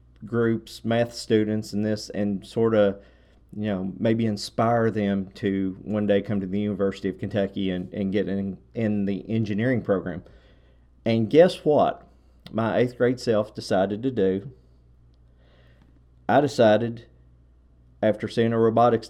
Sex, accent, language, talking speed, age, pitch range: male, American, English, 145 wpm, 40-59, 90-115 Hz